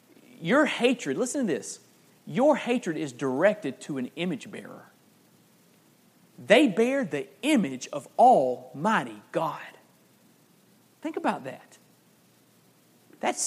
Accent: American